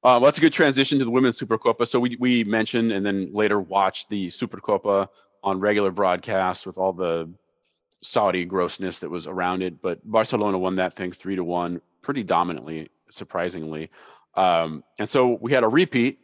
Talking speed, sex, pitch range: 185 wpm, male, 90-115 Hz